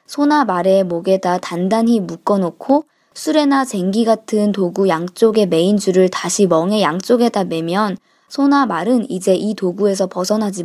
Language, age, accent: Korean, 20-39, native